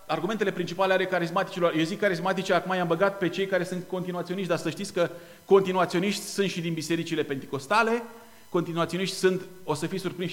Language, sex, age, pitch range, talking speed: Romanian, male, 30-49, 150-200 Hz, 180 wpm